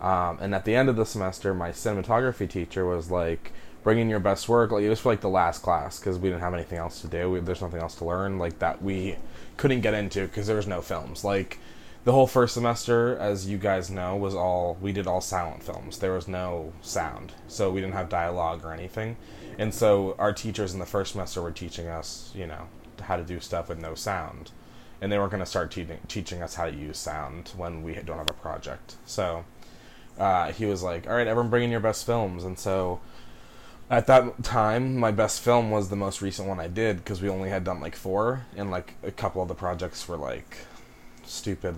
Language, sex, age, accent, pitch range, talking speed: English, male, 20-39, American, 85-105 Hz, 230 wpm